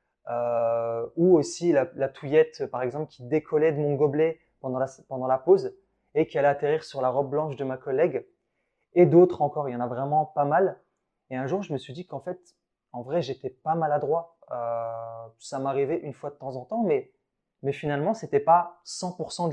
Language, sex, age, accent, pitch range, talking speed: French, male, 20-39, French, 130-165 Hz, 210 wpm